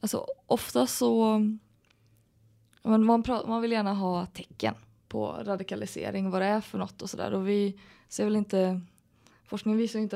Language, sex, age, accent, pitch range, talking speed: Swedish, female, 20-39, native, 185-210 Hz, 160 wpm